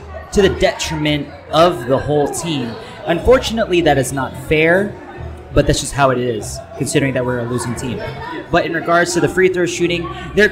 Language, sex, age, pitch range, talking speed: English, male, 30-49, 145-190 Hz, 190 wpm